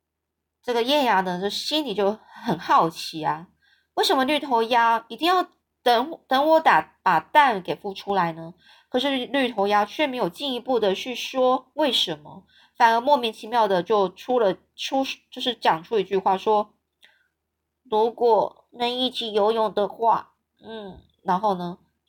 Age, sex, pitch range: 20-39, female, 195-270 Hz